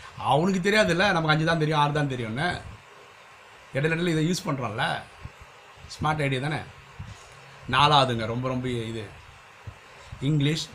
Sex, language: male, Tamil